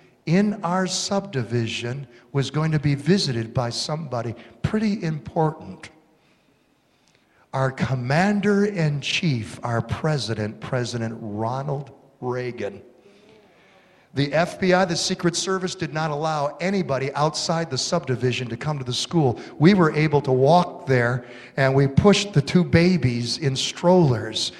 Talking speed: 125 wpm